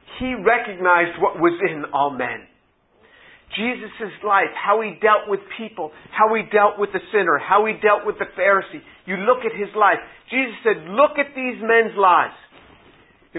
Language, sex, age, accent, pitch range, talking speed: English, male, 50-69, American, 140-205 Hz, 165 wpm